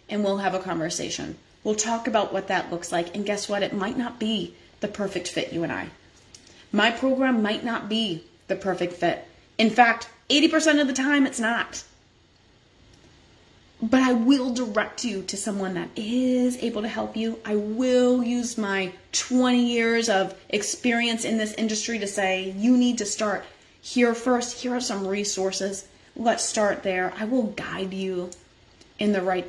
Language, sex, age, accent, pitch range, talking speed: English, female, 30-49, American, 190-235 Hz, 175 wpm